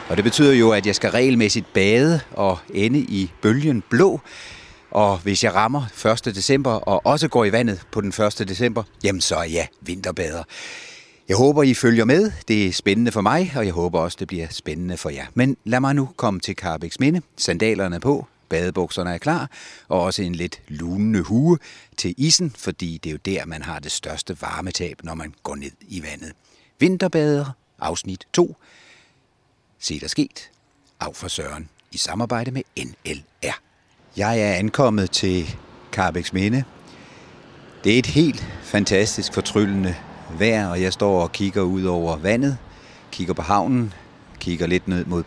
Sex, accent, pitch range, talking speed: male, native, 90-120 Hz, 175 wpm